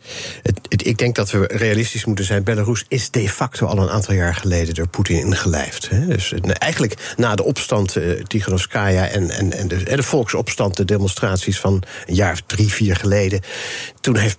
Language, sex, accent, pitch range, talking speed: Dutch, male, Dutch, 100-125 Hz, 195 wpm